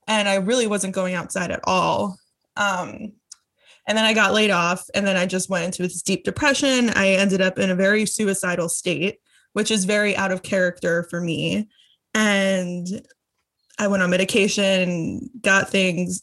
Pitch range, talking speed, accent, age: 195-245 Hz, 175 wpm, American, 20-39